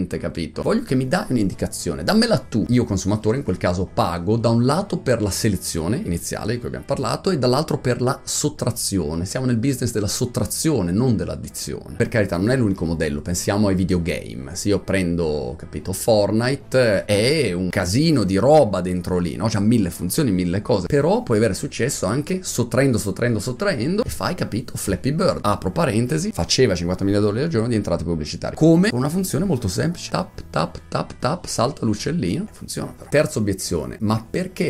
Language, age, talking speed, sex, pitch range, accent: Italian, 30-49, 185 wpm, male, 90-125 Hz, native